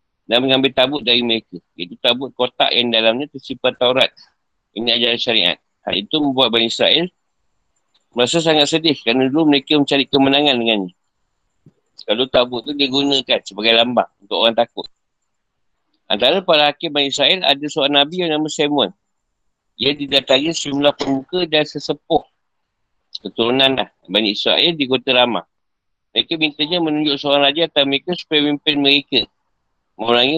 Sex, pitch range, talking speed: male, 125-150 Hz, 140 wpm